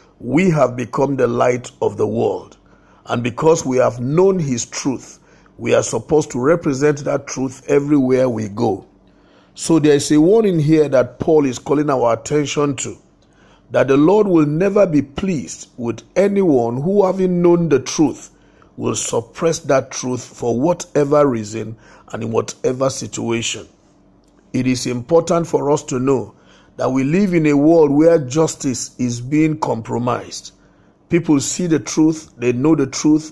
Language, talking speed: English, 160 wpm